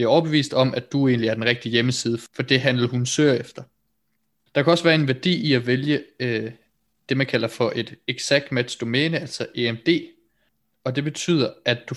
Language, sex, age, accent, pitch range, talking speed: Danish, male, 20-39, native, 120-145 Hz, 210 wpm